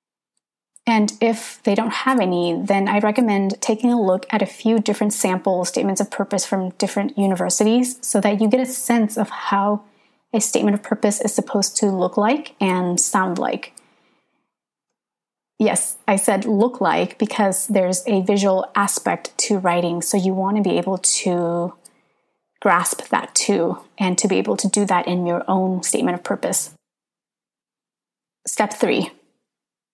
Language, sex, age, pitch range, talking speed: English, female, 20-39, 180-225 Hz, 160 wpm